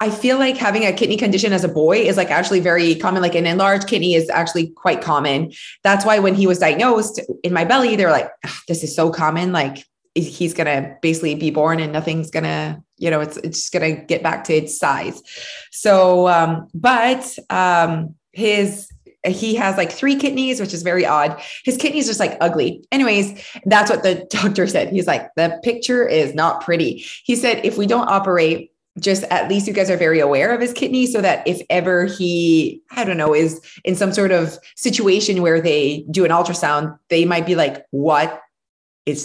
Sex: female